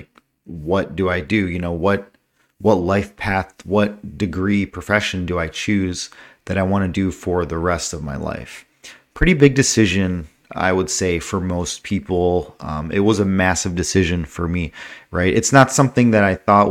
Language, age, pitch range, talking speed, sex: English, 30-49, 90-105 Hz, 185 wpm, male